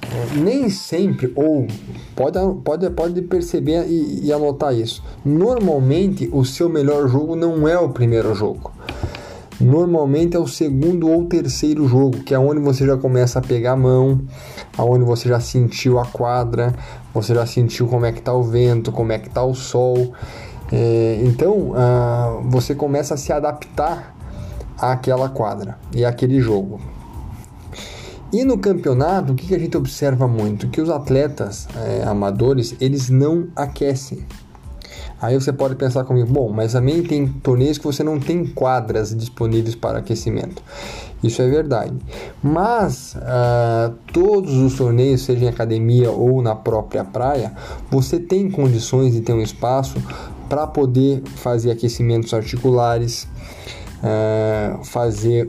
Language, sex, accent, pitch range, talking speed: Portuguese, male, Brazilian, 115-145 Hz, 140 wpm